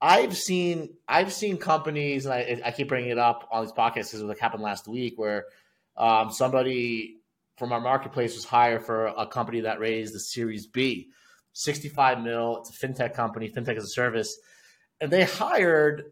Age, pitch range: 30-49, 125-165 Hz